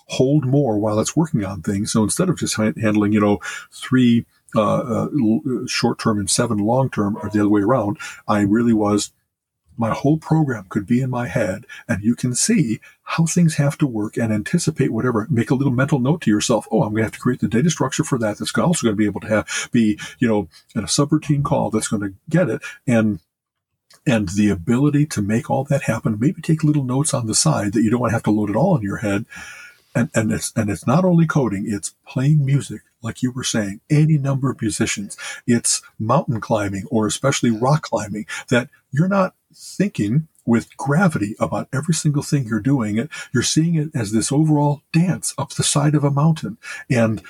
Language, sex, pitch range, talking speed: English, male, 110-150 Hz, 215 wpm